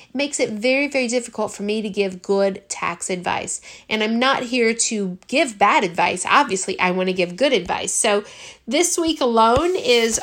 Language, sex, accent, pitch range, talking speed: English, female, American, 195-235 Hz, 190 wpm